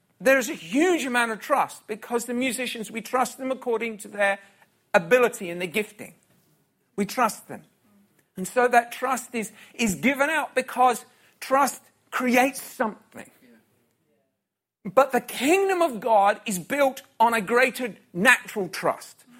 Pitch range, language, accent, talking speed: 220-270 Hz, English, British, 145 wpm